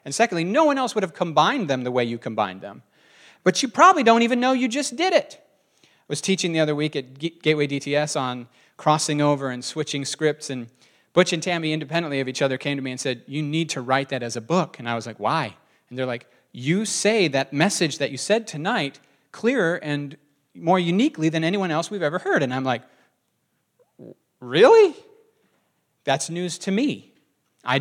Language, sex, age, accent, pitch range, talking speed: English, male, 40-59, American, 135-185 Hz, 205 wpm